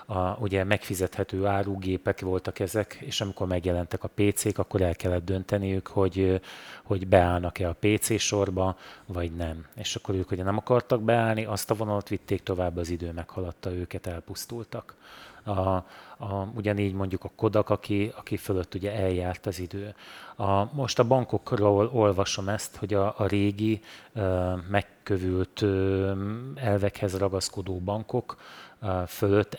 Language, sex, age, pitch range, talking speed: Hungarian, male, 30-49, 95-105 Hz, 140 wpm